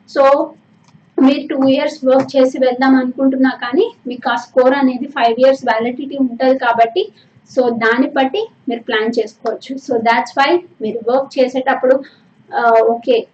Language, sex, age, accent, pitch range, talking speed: Telugu, female, 20-39, native, 235-270 Hz, 140 wpm